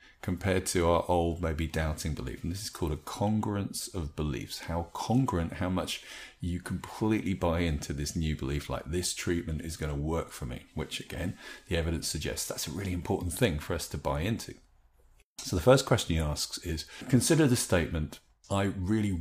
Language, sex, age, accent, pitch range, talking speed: English, male, 30-49, British, 75-100 Hz, 195 wpm